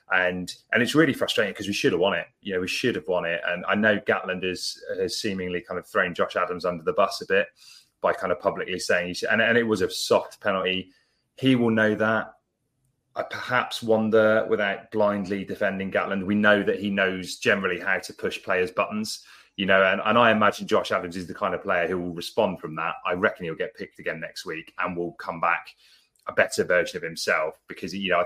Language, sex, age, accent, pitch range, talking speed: English, male, 30-49, British, 90-110 Hz, 225 wpm